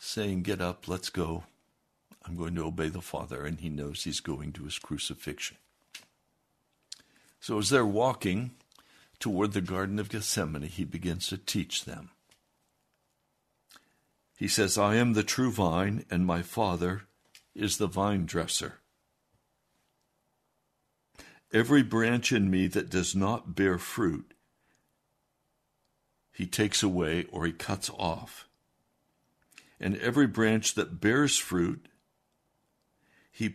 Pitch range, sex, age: 90-110 Hz, male, 60-79